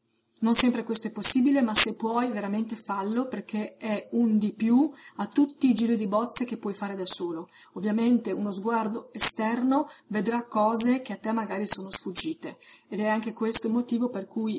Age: 30-49